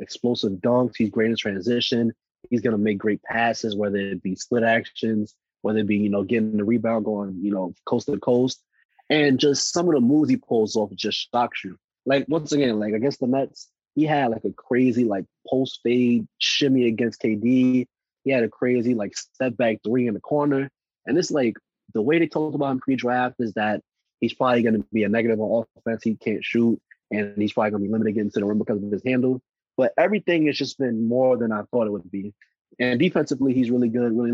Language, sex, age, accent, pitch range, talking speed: English, male, 20-39, American, 110-130 Hz, 220 wpm